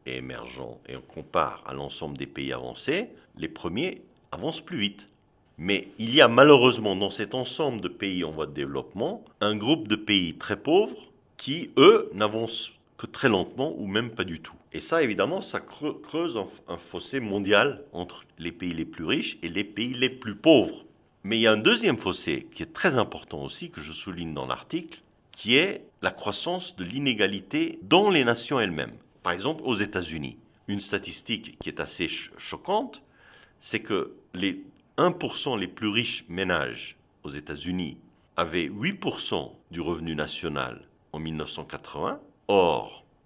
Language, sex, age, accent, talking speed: English, male, 50-69, French, 165 wpm